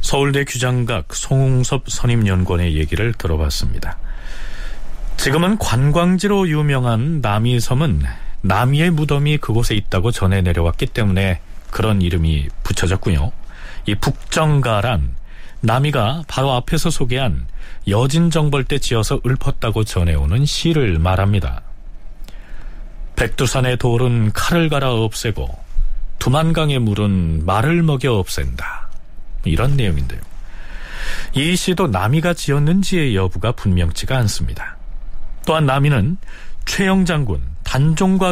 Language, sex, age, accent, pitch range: Korean, male, 40-59, native, 95-145 Hz